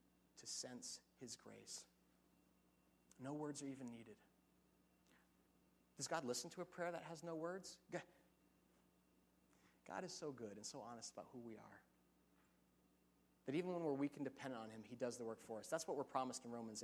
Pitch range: 100-145 Hz